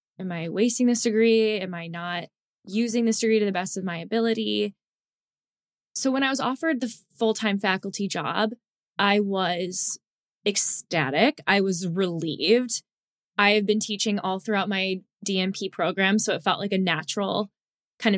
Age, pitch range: 10-29, 190-235 Hz